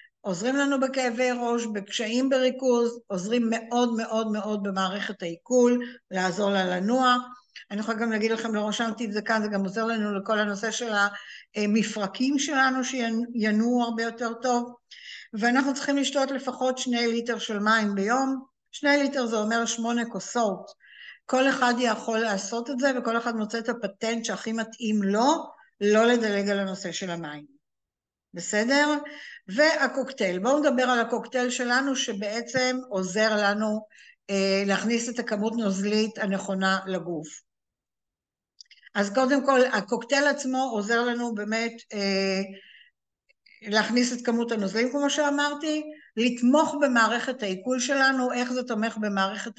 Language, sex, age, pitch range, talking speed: Hebrew, female, 60-79, 210-255 Hz, 135 wpm